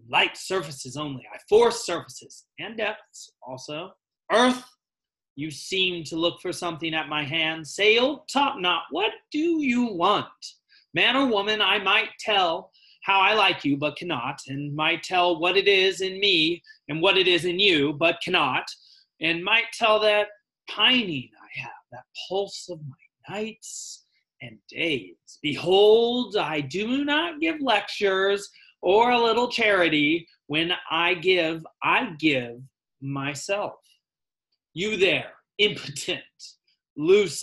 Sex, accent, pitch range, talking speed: male, American, 155-245 Hz, 140 wpm